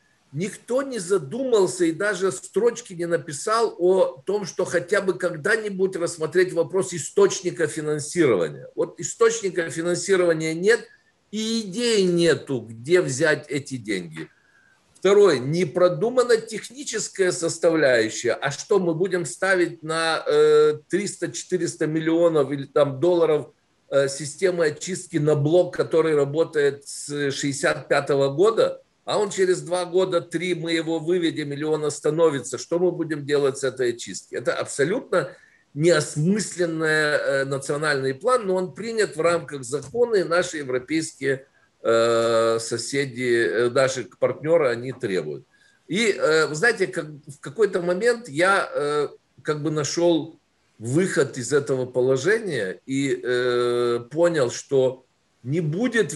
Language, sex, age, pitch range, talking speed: Ukrainian, male, 50-69, 145-190 Hz, 120 wpm